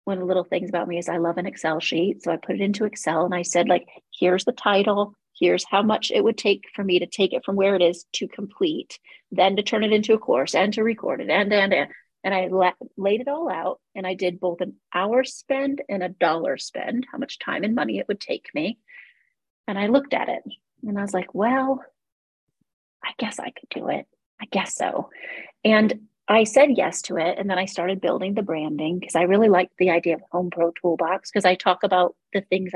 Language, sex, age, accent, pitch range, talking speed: English, female, 30-49, American, 180-225 Hz, 240 wpm